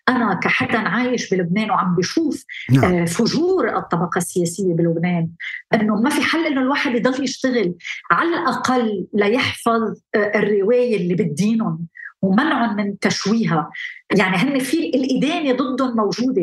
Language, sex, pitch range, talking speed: Arabic, female, 205-265 Hz, 125 wpm